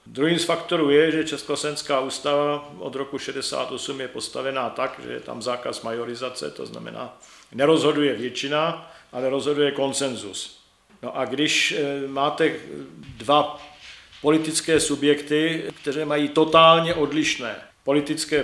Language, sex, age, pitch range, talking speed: Czech, male, 50-69, 125-145 Hz, 115 wpm